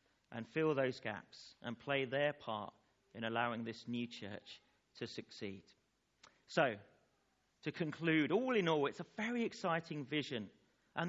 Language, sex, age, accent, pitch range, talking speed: English, male, 40-59, British, 115-175 Hz, 145 wpm